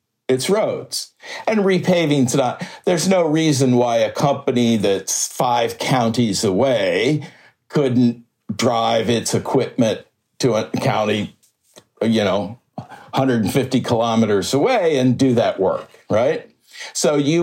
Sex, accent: male, American